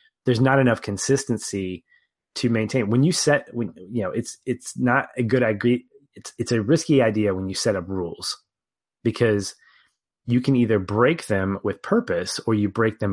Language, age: English, 20-39